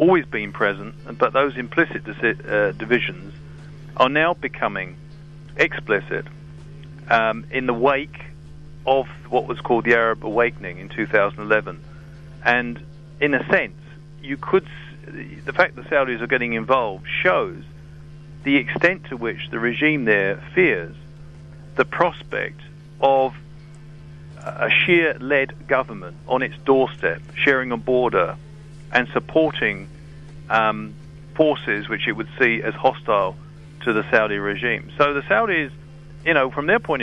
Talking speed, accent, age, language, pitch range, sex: 130 wpm, British, 50-69, English, 115-150 Hz, male